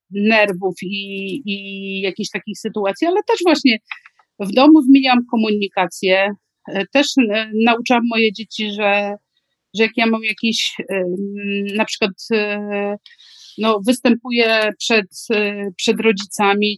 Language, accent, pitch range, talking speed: Polish, native, 200-235 Hz, 105 wpm